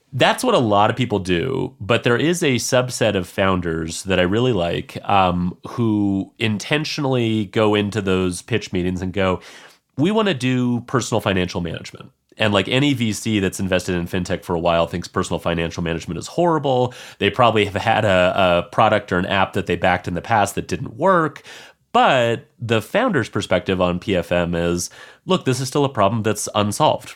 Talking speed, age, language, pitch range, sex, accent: 190 wpm, 30-49, English, 95-115 Hz, male, American